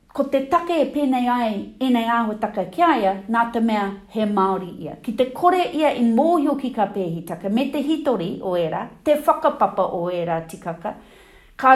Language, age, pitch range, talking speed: English, 40-59, 195-255 Hz, 185 wpm